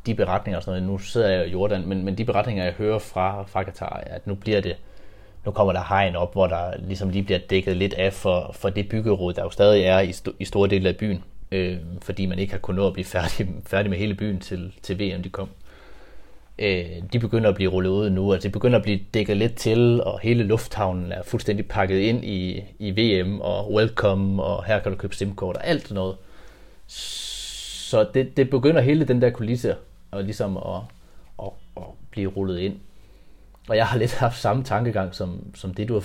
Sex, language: male, Danish